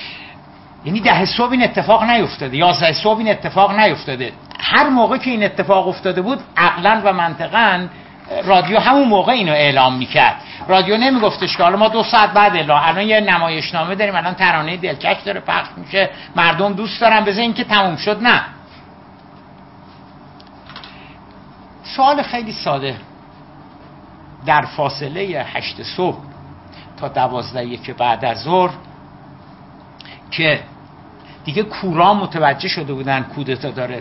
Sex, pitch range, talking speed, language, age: male, 140-200 Hz, 135 wpm, Persian, 60-79